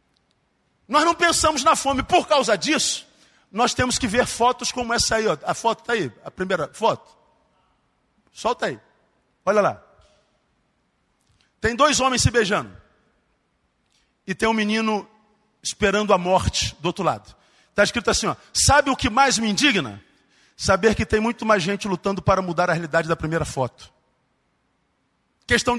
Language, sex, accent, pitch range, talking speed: Portuguese, male, Brazilian, 210-270 Hz, 160 wpm